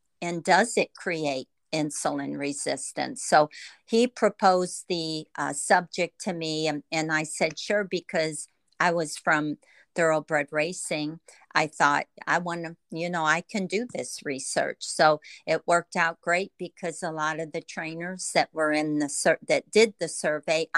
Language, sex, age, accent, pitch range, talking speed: English, female, 50-69, American, 155-175 Hz, 165 wpm